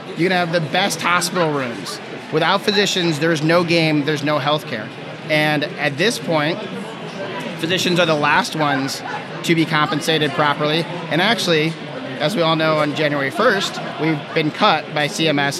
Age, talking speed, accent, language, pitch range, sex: 30-49, 160 wpm, American, English, 150-180 Hz, male